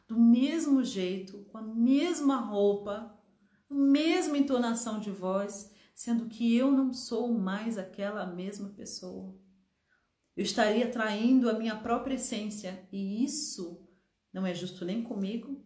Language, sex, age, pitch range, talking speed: Portuguese, female, 40-59, 185-235 Hz, 135 wpm